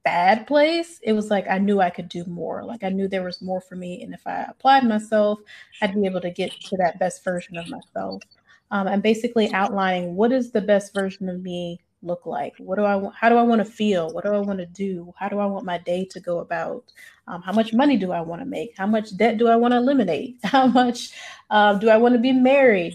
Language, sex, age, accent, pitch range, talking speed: English, female, 30-49, American, 185-220 Hz, 255 wpm